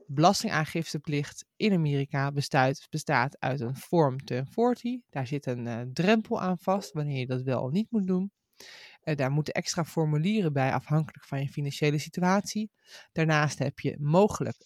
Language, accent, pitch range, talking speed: Dutch, Dutch, 145-180 Hz, 160 wpm